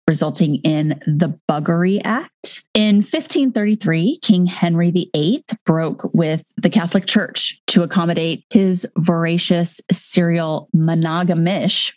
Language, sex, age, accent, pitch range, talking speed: English, female, 30-49, American, 165-215 Hz, 105 wpm